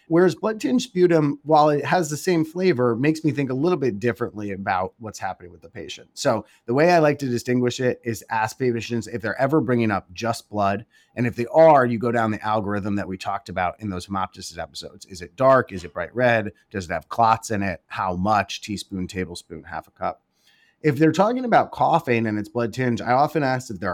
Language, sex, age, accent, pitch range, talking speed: English, male, 30-49, American, 95-125 Hz, 230 wpm